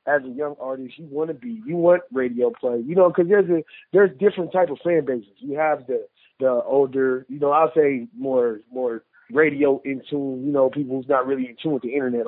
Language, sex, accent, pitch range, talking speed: English, male, American, 130-160 Hz, 235 wpm